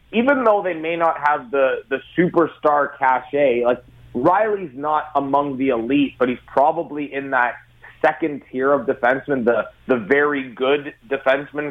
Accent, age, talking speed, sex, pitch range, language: American, 30-49, 155 wpm, male, 125-155 Hz, English